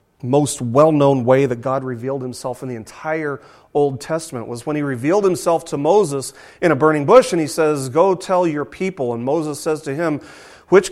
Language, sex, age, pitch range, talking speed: English, male, 40-59, 130-190 Hz, 200 wpm